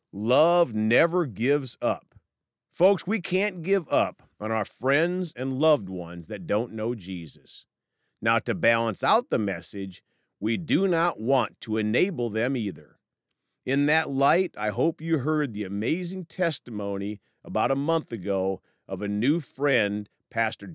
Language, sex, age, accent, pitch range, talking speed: English, male, 40-59, American, 100-160 Hz, 150 wpm